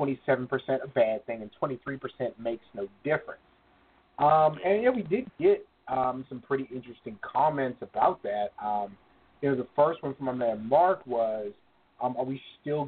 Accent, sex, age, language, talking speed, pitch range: American, male, 30-49, English, 180 wpm, 120-145 Hz